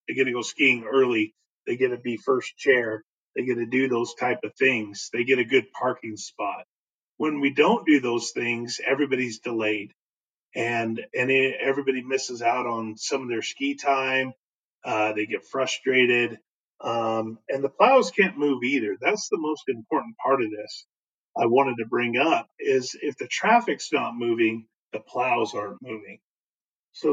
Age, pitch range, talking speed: 30-49, 120-150 Hz, 175 wpm